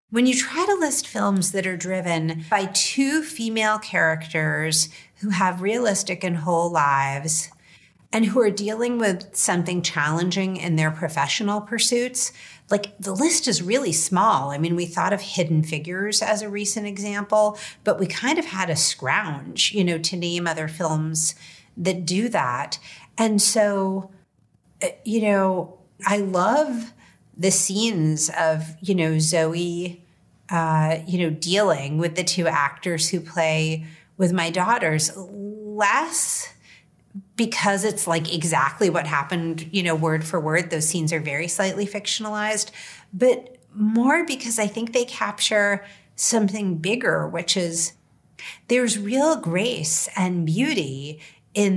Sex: female